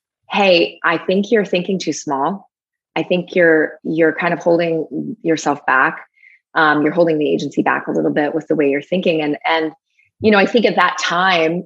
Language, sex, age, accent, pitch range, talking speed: English, female, 30-49, American, 155-195 Hz, 200 wpm